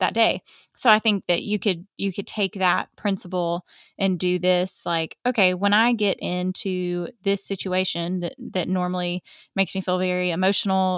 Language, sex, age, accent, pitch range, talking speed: English, female, 20-39, American, 180-200 Hz, 175 wpm